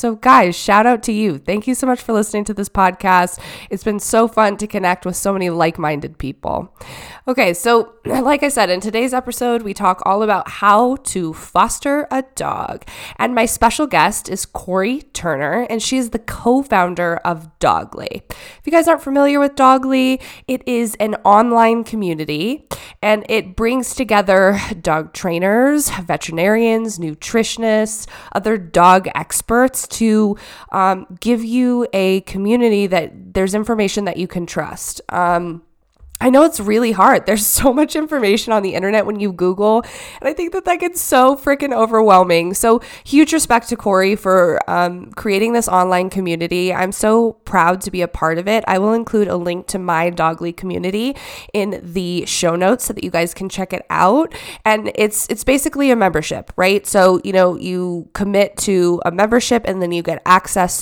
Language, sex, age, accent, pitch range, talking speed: English, female, 20-39, American, 185-235 Hz, 175 wpm